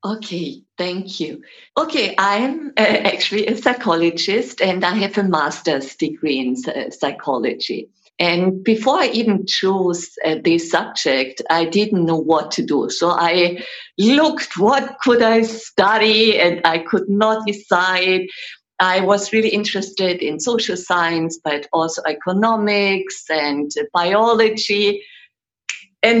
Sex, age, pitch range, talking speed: female, 50-69, 170-220 Hz, 130 wpm